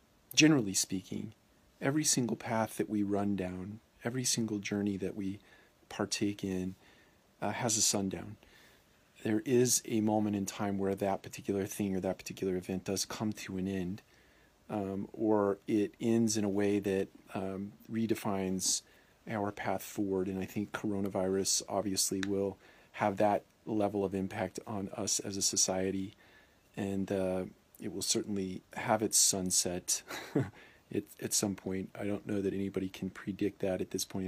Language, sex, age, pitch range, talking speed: English, male, 40-59, 95-105 Hz, 160 wpm